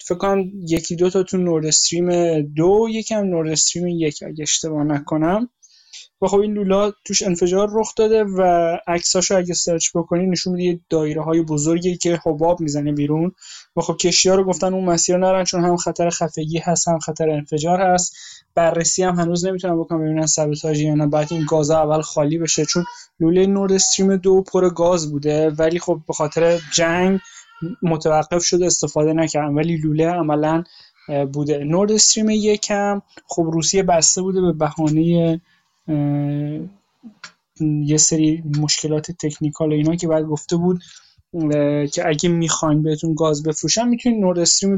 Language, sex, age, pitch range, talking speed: Persian, male, 20-39, 155-180 Hz, 155 wpm